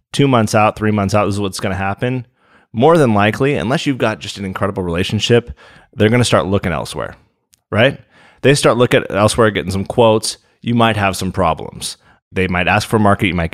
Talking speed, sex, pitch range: 210 wpm, male, 95-120 Hz